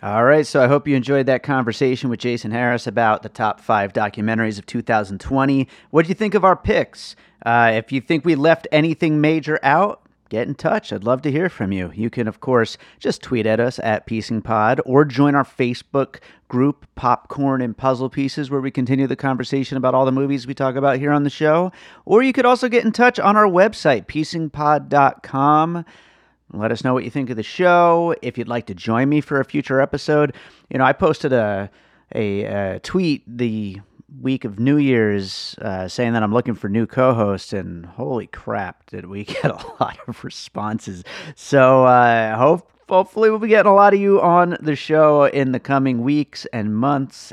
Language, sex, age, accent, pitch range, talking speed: English, male, 30-49, American, 110-150 Hz, 205 wpm